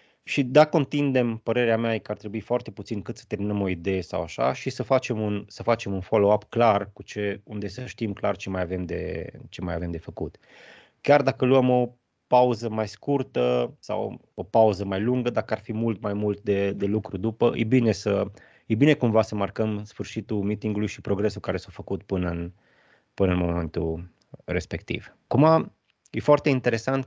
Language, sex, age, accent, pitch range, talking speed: Romanian, male, 20-39, native, 100-125 Hz, 195 wpm